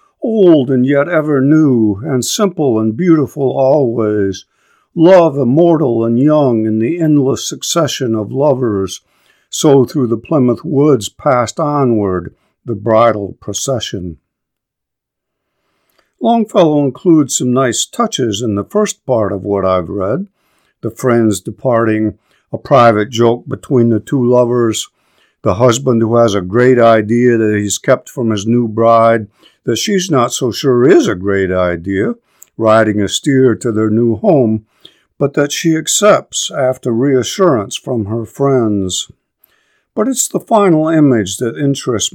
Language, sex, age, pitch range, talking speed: English, male, 50-69, 110-145 Hz, 140 wpm